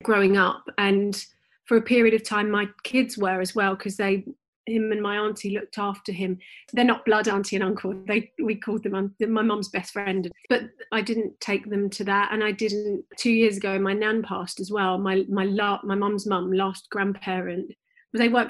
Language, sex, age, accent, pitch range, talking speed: English, female, 30-49, British, 195-225 Hz, 205 wpm